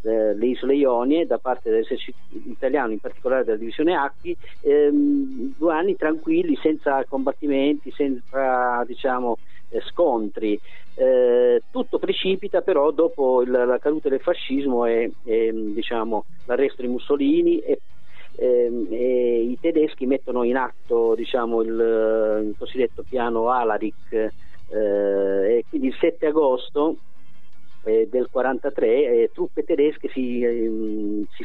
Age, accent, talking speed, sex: 40-59, native, 120 wpm, male